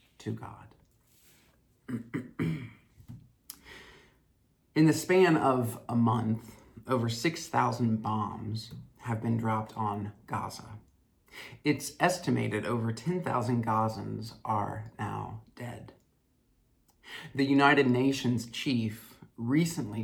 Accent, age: American, 40-59